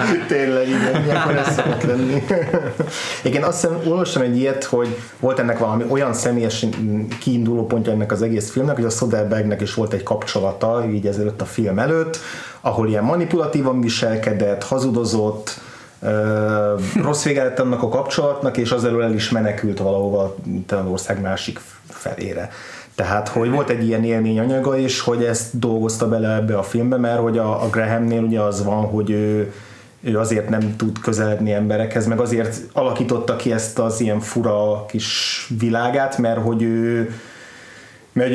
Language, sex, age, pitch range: Hungarian, male, 30-49, 105-125 Hz